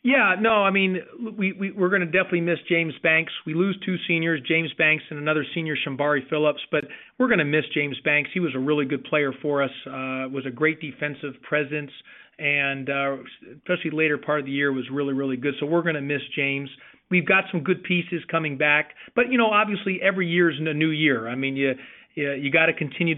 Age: 40-59